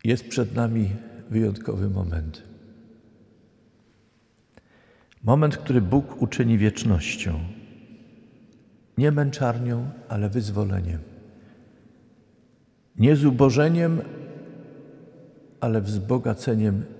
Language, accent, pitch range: Polish, native, 100-125 Hz